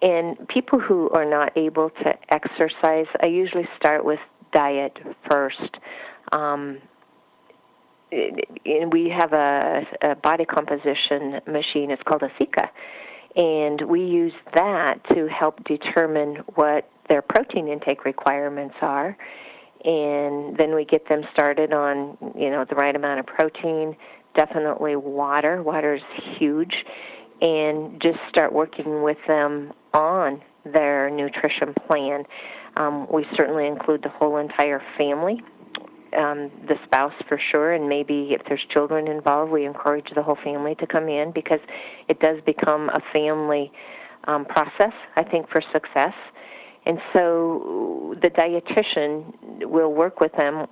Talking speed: 135 wpm